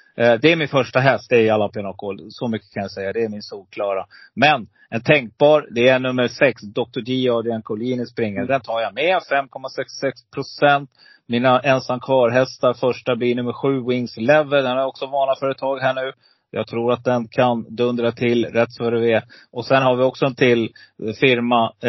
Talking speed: 185 wpm